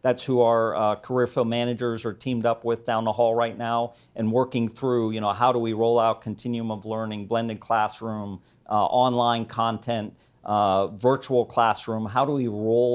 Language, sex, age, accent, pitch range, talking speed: English, male, 50-69, American, 110-130 Hz, 190 wpm